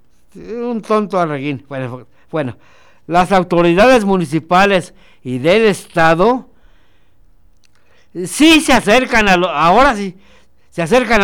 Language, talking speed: Spanish, 105 wpm